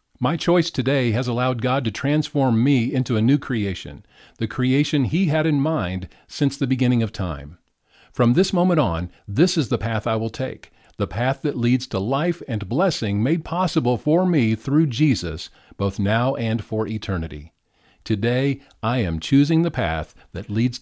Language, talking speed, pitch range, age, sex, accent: English, 180 wpm, 100-140 Hz, 50-69, male, American